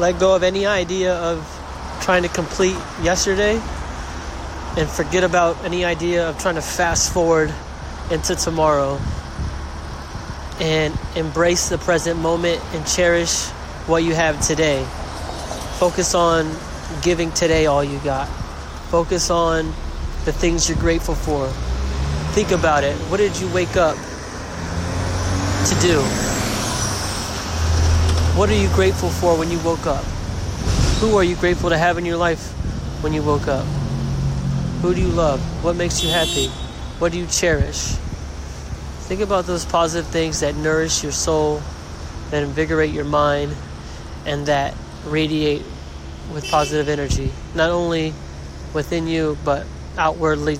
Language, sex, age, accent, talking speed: English, male, 20-39, American, 140 wpm